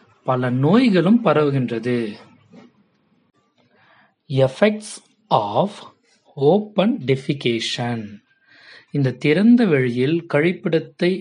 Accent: native